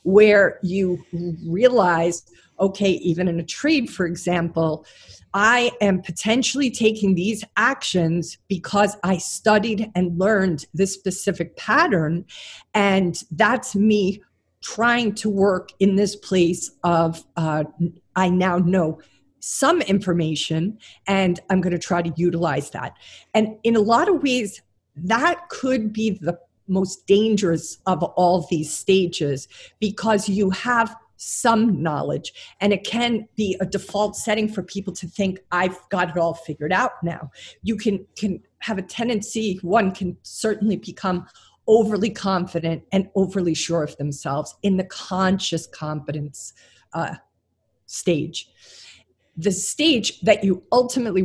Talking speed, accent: 135 wpm, American